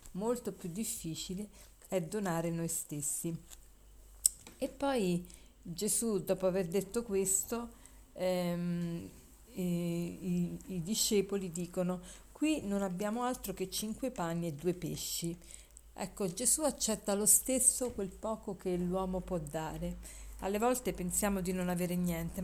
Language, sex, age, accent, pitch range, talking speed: Italian, female, 40-59, native, 175-215 Hz, 130 wpm